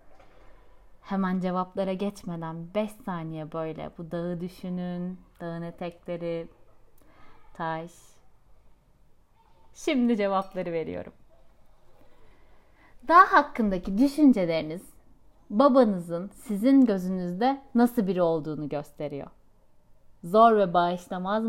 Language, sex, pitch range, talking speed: Turkish, female, 175-240 Hz, 80 wpm